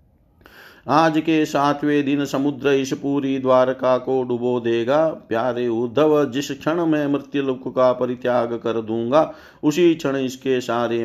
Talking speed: 140 wpm